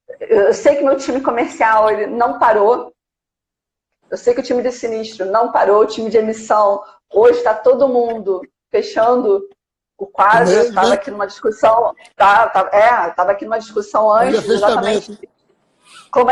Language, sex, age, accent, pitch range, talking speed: Portuguese, female, 40-59, Brazilian, 210-265 Hz, 160 wpm